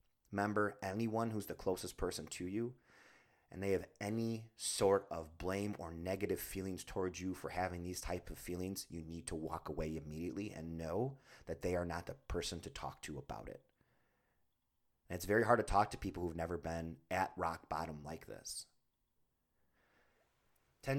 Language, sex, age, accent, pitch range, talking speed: English, male, 30-49, American, 85-110 Hz, 175 wpm